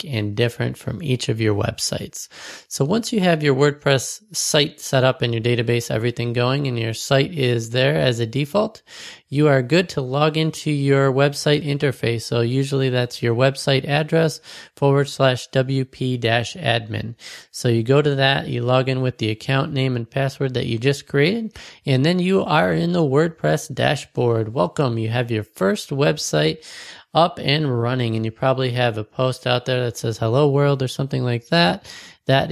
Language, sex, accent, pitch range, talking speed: English, male, American, 120-150 Hz, 185 wpm